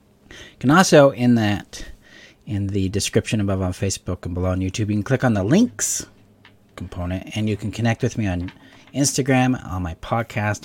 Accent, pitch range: American, 95-125 Hz